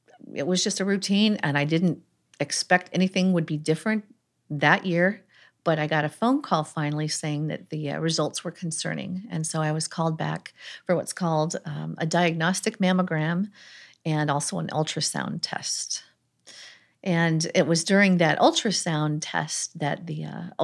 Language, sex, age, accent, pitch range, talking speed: English, female, 40-59, American, 150-185 Hz, 165 wpm